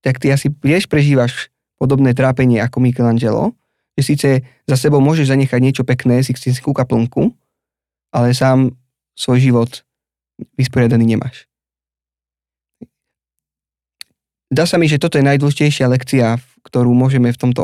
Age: 20-39